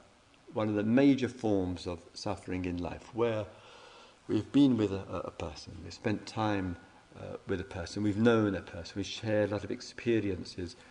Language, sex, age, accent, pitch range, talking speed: English, male, 50-69, British, 100-140 Hz, 180 wpm